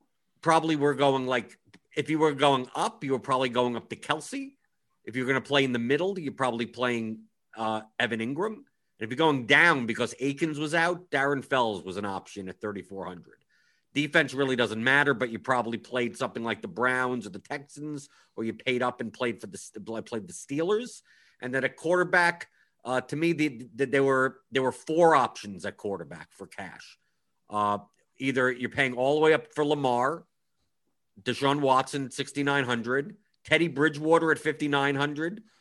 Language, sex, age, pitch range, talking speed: English, male, 50-69, 125-155 Hz, 180 wpm